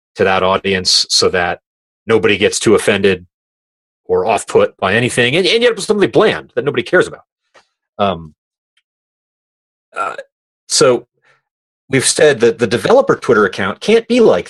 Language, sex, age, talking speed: English, male, 30-49, 155 wpm